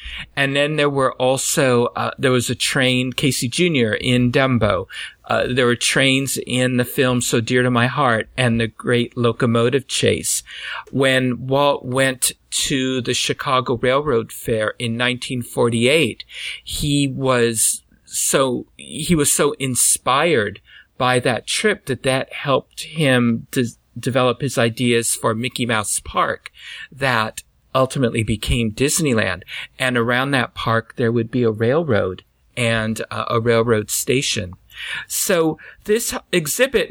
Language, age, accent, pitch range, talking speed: English, 50-69, American, 115-140 Hz, 135 wpm